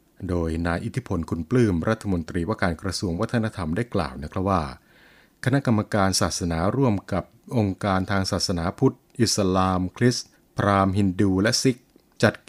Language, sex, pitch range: Thai, male, 90-115 Hz